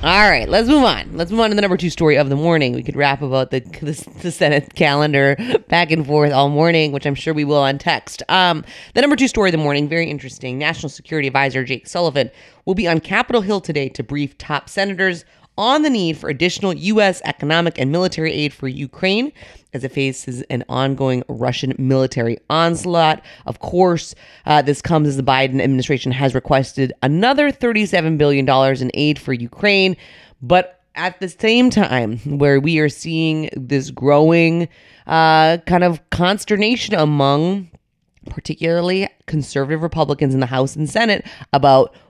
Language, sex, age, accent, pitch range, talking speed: English, female, 30-49, American, 135-180 Hz, 180 wpm